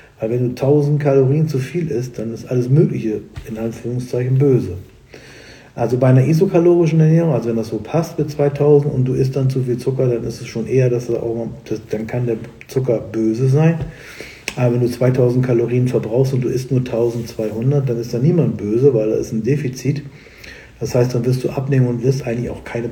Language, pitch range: German, 120-145 Hz